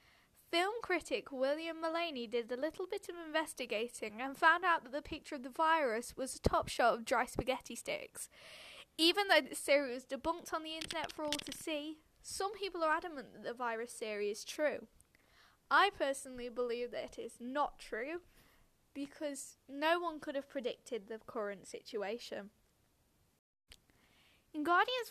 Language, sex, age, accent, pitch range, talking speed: English, female, 10-29, British, 245-335 Hz, 165 wpm